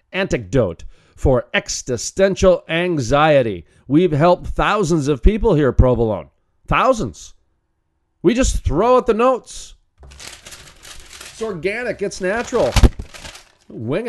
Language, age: English, 40-59